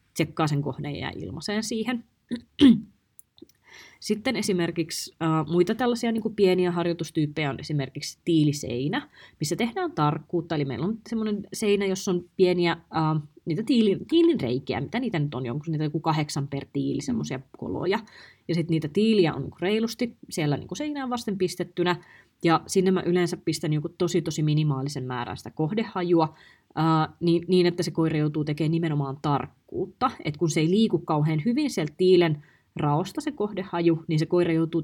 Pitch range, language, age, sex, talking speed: 150-185 Hz, Finnish, 30-49, female, 155 wpm